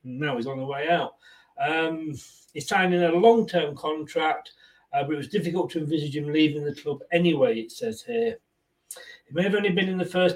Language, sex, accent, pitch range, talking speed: English, male, British, 145-185 Hz, 205 wpm